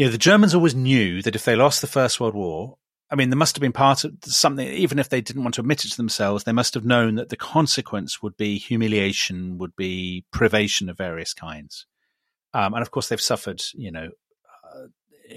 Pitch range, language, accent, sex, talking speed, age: 100-135 Hz, English, British, male, 230 wpm, 40-59